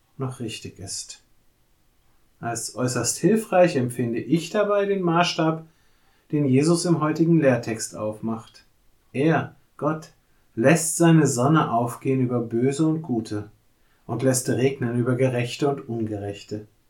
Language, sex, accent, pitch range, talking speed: German, male, German, 115-160 Hz, 120 wpm